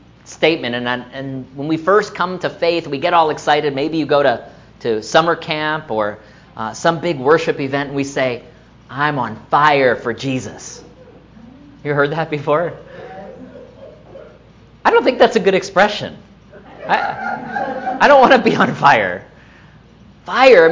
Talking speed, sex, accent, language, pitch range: 160 wpm, male, American, English, 135-185 Hz